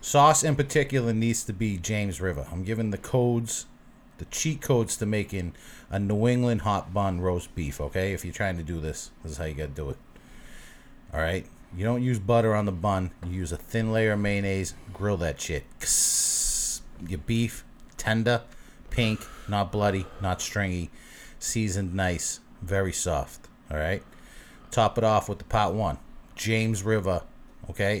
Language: English